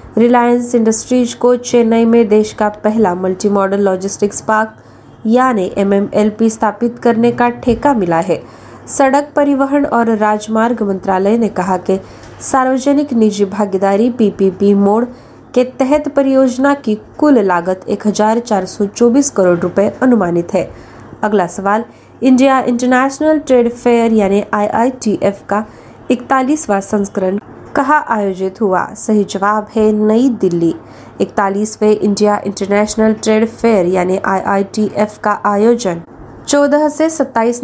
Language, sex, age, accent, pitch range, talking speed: Marathi, female, 20-39, native, 200-245 Hz, 125 wpm